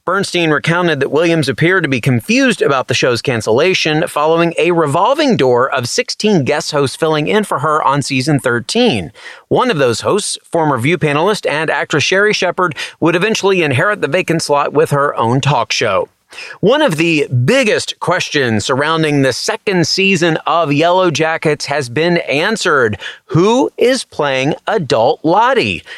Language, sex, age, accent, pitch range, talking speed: English, male, 30-49, American, 140-195 Hz, 160 wpm